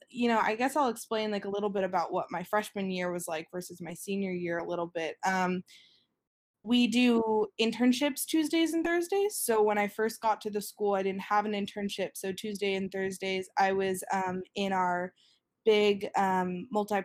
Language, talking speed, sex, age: English, 195 wpm, female, 20-39